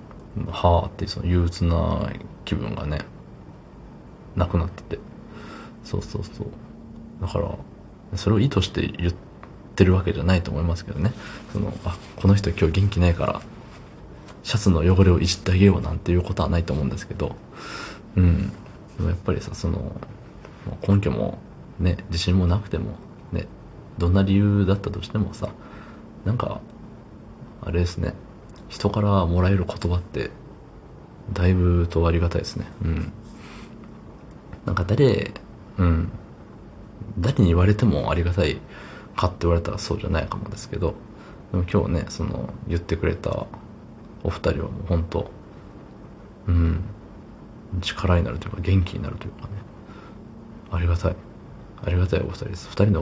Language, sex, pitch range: Japanese, male, 85-105 Hz